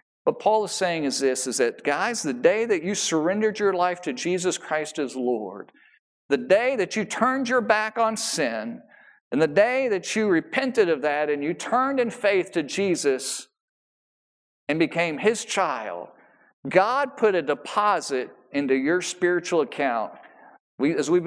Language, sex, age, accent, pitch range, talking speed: English, male, 50-69, American, 155-215 Hz, 165 wpm